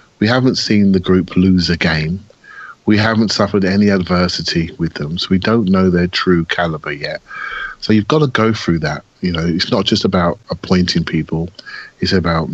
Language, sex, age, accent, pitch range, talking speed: English, male, 30-49, British, 90-115 Hz, 190 wpm